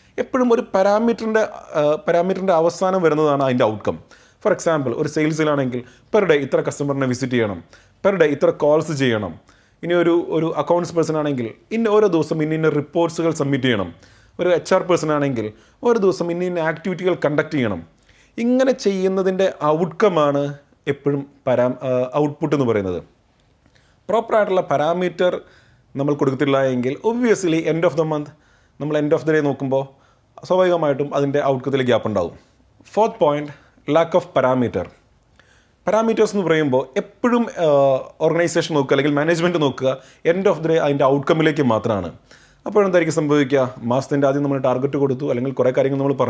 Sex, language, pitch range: male, English, 135-175 Hz